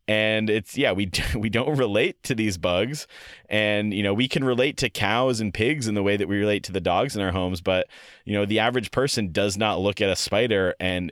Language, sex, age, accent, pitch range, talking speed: English, male, 30-49, American, 95-115 Hz, 245 wpm